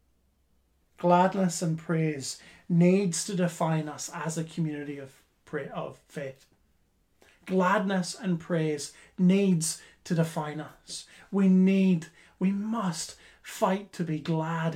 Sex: male